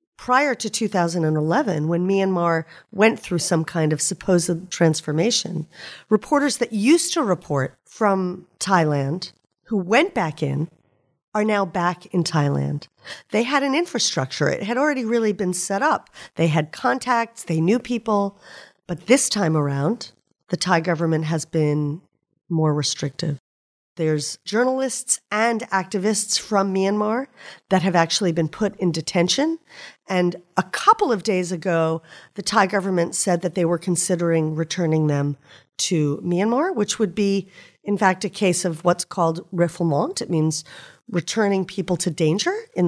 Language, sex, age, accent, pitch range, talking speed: English, female, 40-59, American, 160-215 Hz, 145 wpm